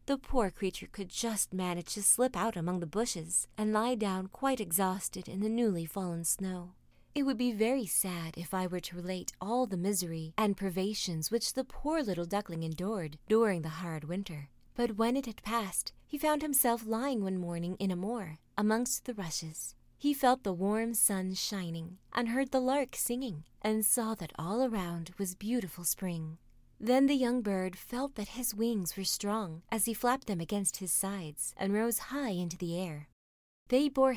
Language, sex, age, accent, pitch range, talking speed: English, female, 30-49, American, 175-235 Hz, 190 wpm